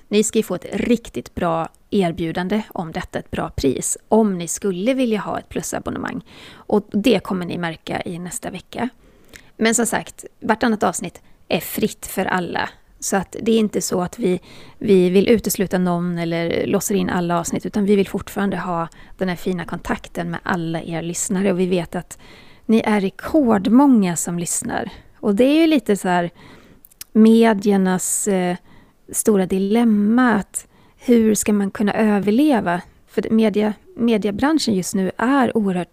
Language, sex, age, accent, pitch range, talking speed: Swedish, female, 30-49, native, 180-225 Hz, 165 wpm